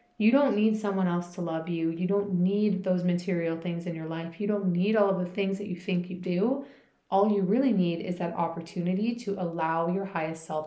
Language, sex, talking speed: English, female, 230 wpm